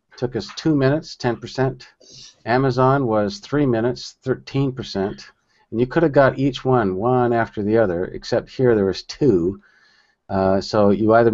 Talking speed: 160 wpm